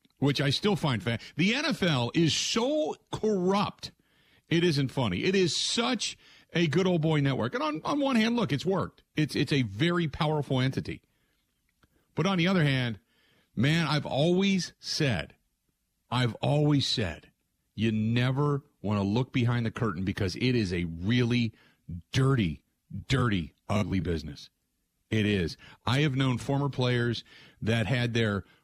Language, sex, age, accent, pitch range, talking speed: English, male, 40-59, American, 105-145 Hz, 155 wpm